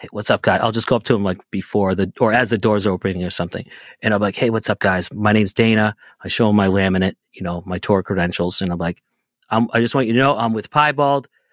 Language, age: English, 30-49